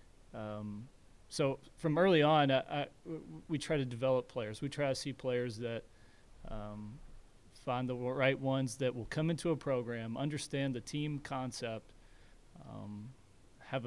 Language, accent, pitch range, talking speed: English, American, 115-140 Hz, 150 wpm